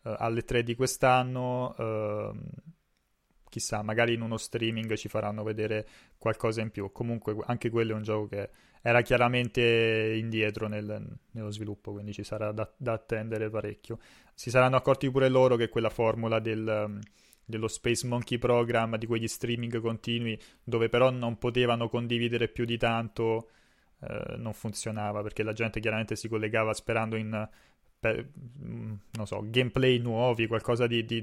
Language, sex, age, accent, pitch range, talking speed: Italian, male, 20-39, native, 110-120 Hz, 150 wpm